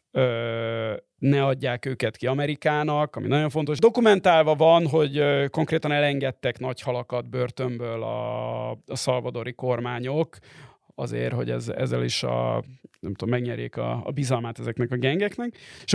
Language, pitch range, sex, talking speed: Hungarian, 125-150 Hz, male, 130 wpm